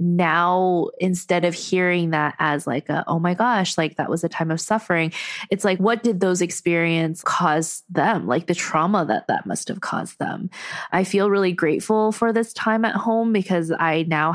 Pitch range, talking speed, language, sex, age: 170-195 Hz, 195 wpm, English, female, 20-39